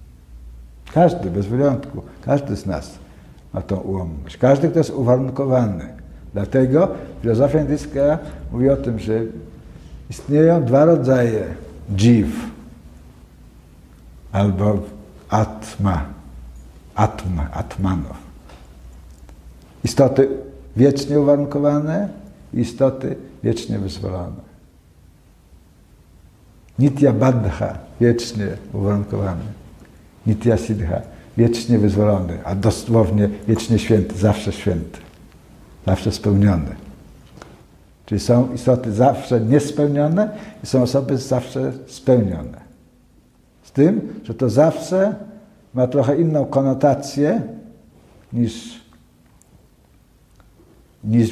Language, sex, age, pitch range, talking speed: Polish, male, 60-79, 95-130 Hz, 85 wpm